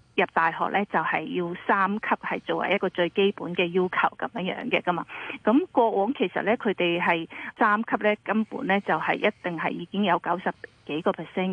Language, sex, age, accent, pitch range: Chinese, female, 30-49, native, 175-215 Hz